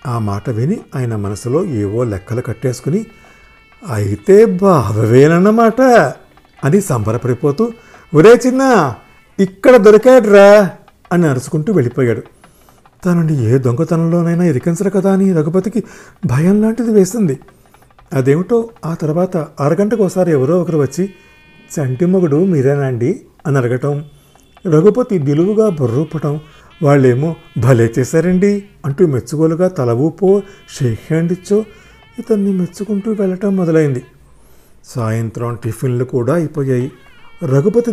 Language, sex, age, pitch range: Telugu, male, 50-69, 125-185 Hz